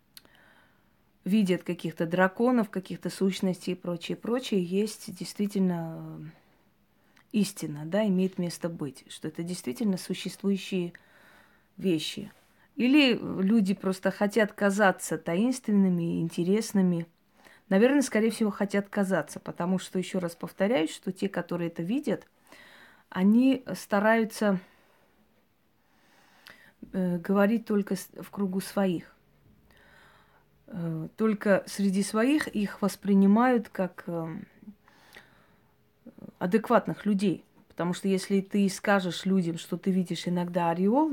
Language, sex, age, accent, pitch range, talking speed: Russian, female, 30-49, native, 175-210 Hz, 100 wpm